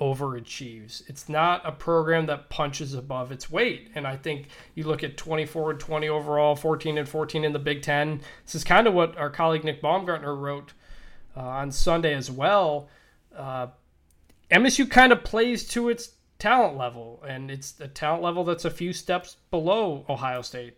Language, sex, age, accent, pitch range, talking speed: English, male, 20-39, American, 140-170 Hz, 180 wpm